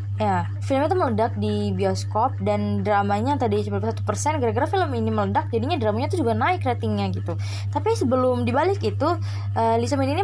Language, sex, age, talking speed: Indonesian, female, 20-39, 170 wpm